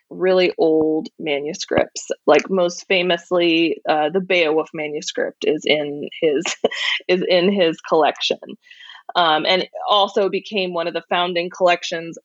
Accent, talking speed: American, 125 wpm